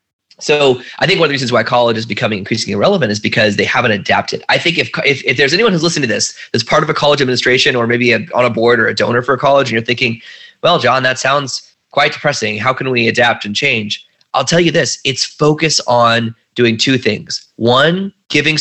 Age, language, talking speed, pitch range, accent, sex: 20-39, English, 240 wpm, 110-140 Hz, American, male